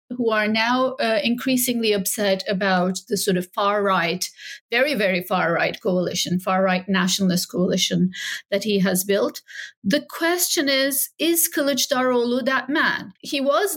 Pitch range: 190-260 Hz